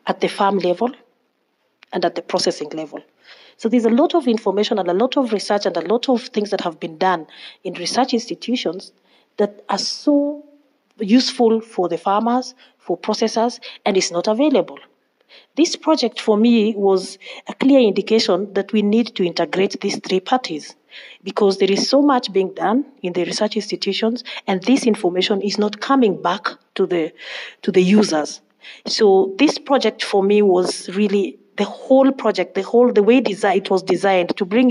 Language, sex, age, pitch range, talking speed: English, female, 40-59, 185-235 Hz, 175 wpm